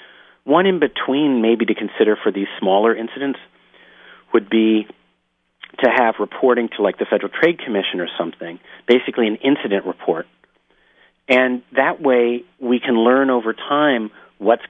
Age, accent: 40-59, American